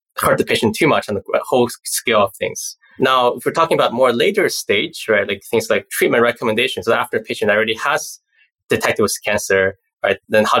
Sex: male